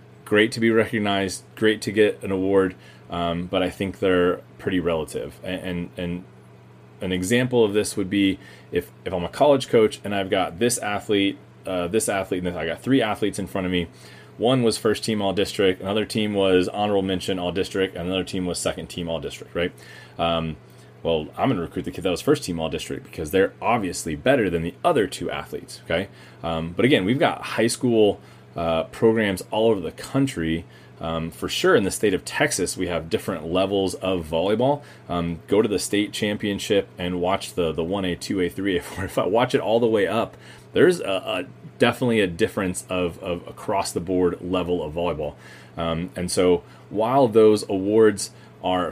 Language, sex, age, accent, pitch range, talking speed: English, male, 30-49, American, 85-105 Hz, 205 wpm